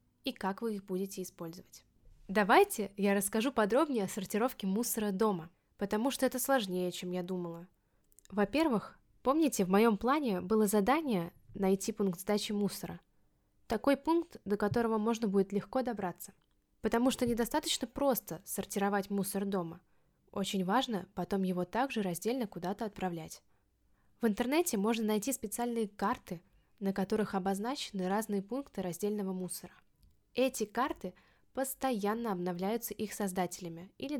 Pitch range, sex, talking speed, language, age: 190-235 Hz, female, 130 wpm, Russian, 10-29